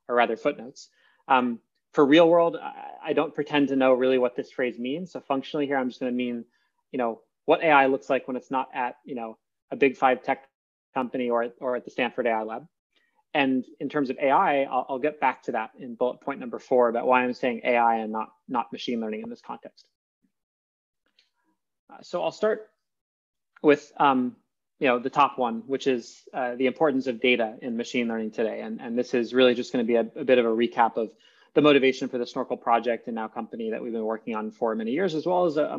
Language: English